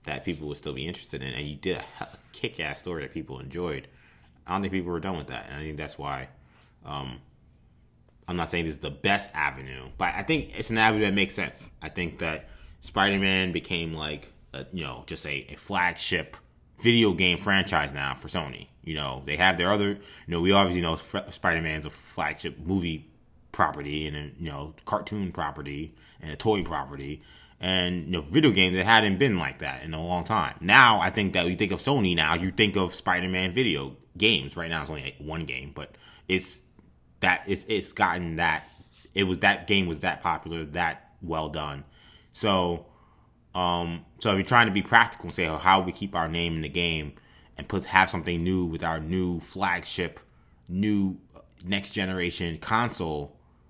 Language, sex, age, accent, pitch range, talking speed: English, male, 20-39, American, 75-95 Hz, 205 wpm